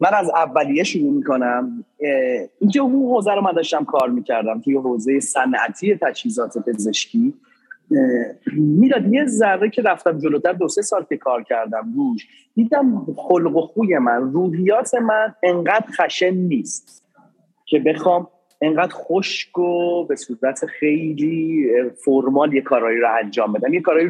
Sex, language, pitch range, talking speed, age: male, Persian, 145-230 Hz, 135 wpm, 30-49